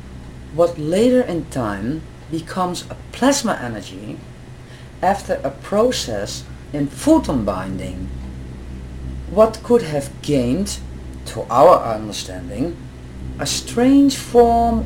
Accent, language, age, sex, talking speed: Dutch, English, 40-59, female, 95 wpm